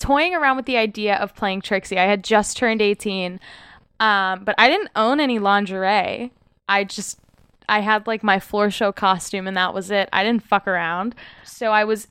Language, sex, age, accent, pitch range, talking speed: English, female, 10-29, American, 195-245 Hz, 200 wpm